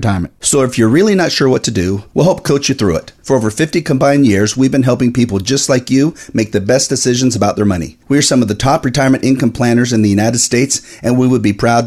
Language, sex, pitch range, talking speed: English, male, 110-135 Hz, 265 wpm